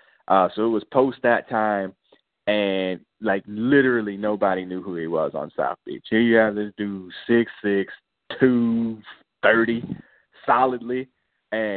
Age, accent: 20-39, American